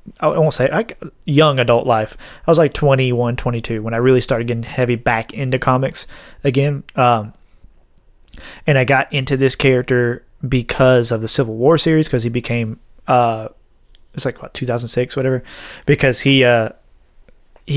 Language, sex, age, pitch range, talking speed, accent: English, male, 30-49, 120-145 Hz, 160 wpm, American